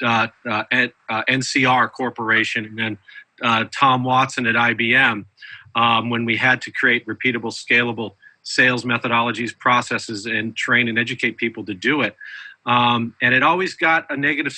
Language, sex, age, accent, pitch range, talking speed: English, male, 40-59, American, 115-135 Hz, 160 wpm